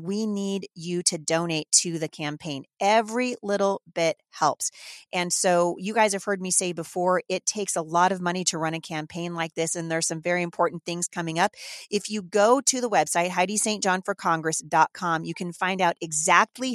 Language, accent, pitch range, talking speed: English, American, 165-205 Hz, 190 wpm